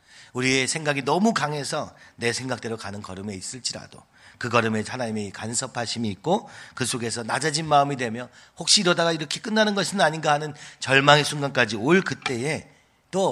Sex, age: male, 40-59